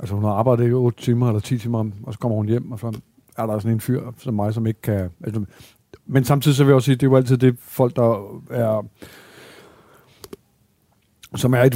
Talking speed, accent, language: 240 wpm, native, Danish